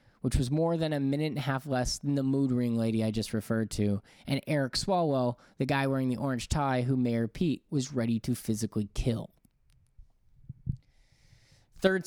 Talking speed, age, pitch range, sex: 185 wpm, 20-39, 115-150 Hz, male